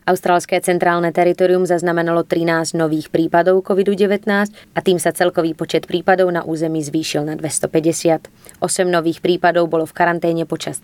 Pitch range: 115-175 Hz